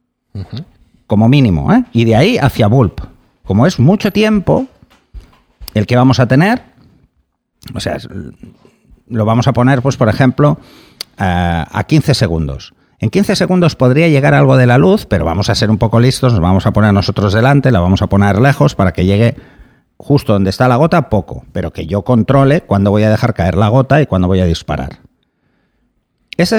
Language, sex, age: Spanish, male, 60-79